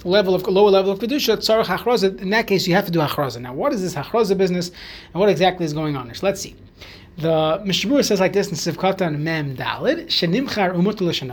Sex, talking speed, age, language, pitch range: male, 220 wpm, 30-49, English, 165-220 Hz